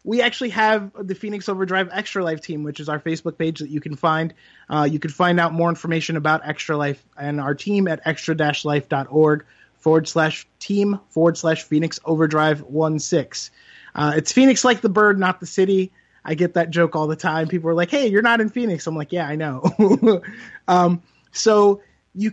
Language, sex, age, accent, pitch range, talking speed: English, male, 20-39, American, 160-205 Hz, 195 wpm